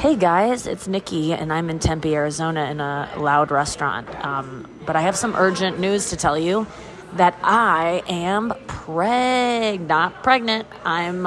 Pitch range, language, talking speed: 170-220 Hz, English, 160 wpm